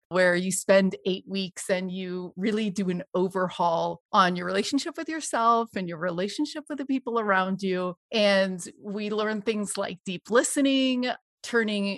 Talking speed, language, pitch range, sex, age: 160 wpm, English, 185-230 Hz, female, 30-49